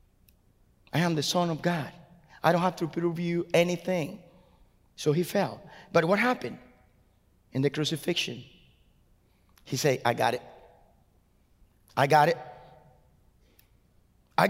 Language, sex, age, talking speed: English, male, 30-49, 130 wpm